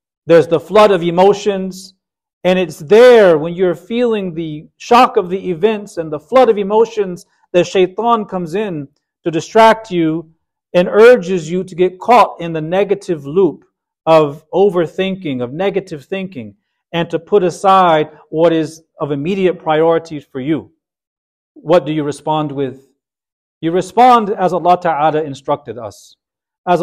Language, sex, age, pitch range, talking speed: English, male, 40-59, 150-190 Hz, 150 wpm